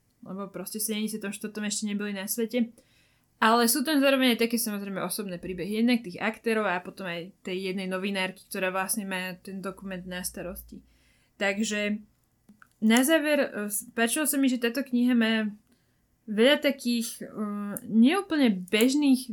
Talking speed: 160 wpm